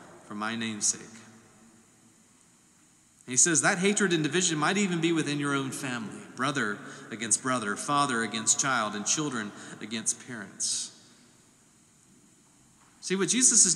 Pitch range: 140-185 Hz